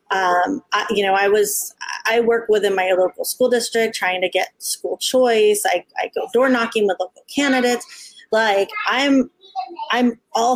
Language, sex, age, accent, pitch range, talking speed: English, female, 30-49, American, 195-245 Hz, 170 wpm